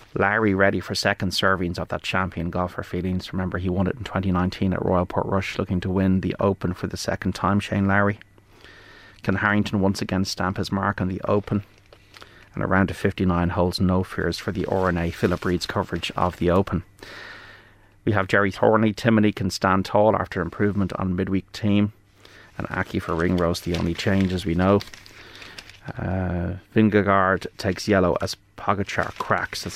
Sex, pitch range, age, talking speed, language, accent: male, 90-100 Hz, 30-49, 175 wpm, English, Irish